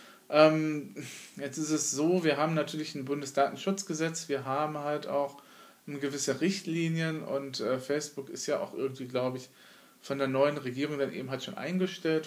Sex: male